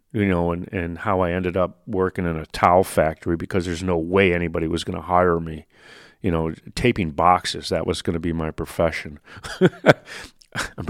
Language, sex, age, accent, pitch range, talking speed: English, male, 40-59, American, 85-130 Hz, 195 wpm